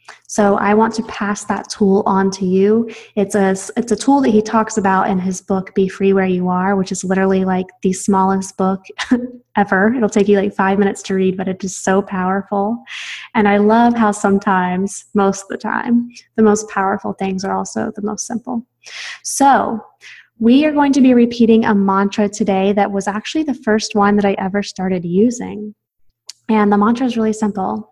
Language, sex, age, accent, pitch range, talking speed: English, female, 20-39, American, 190-225 Hz, 200 wpm